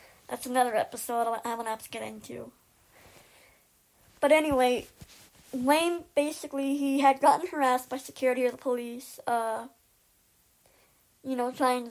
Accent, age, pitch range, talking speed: American, 20-39, 230-265 Hz, 135 wpm